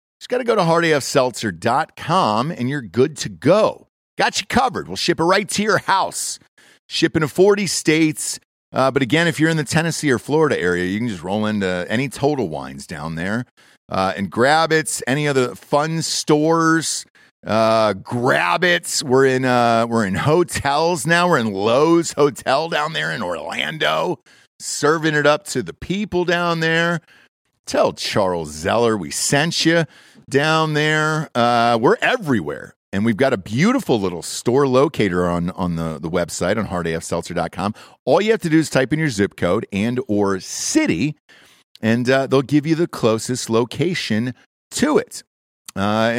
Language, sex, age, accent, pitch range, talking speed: English, male, 40-59, American, 110-165 Hz, 170 wpm